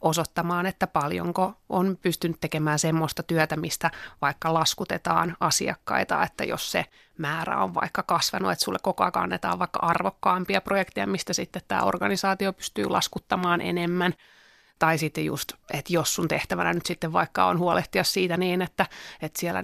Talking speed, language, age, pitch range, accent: 155 wpm, Finnish, 30-49, 155-180 Hz, native